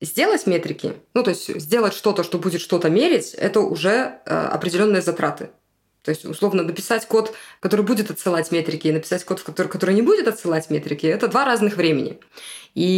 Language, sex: Russian, female